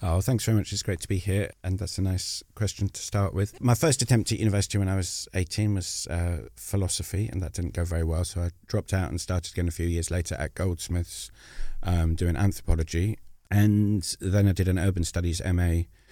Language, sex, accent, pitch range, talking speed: English, male, British, 85-100 Hz, 220 wpm